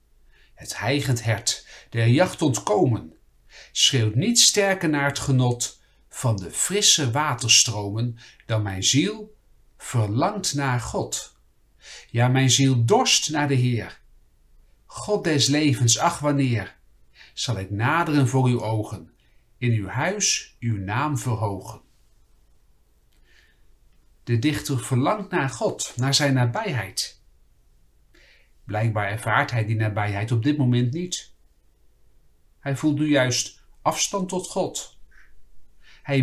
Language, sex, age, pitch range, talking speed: Dutch, male, 50-69, 110-165 Hz, 120 wpm